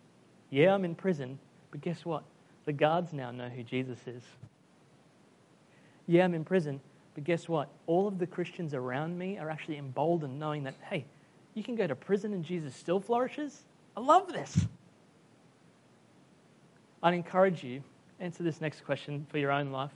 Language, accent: English, Australian